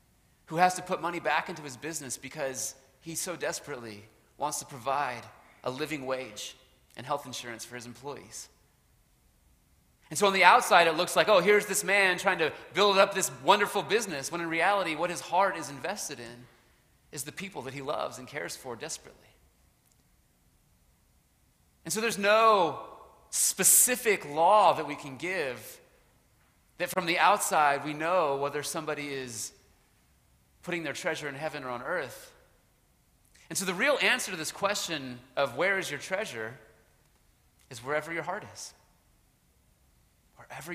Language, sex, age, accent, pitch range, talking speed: English, male, 30-49, American, 135-185 Hz, 160 wpm